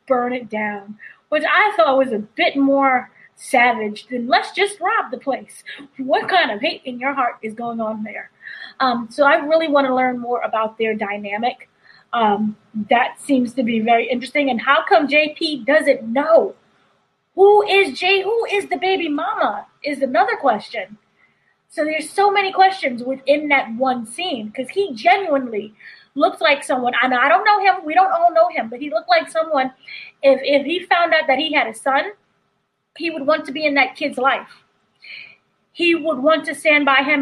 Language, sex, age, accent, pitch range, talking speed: English, female, 20-39, American, 250-330 Hz, 190 wpm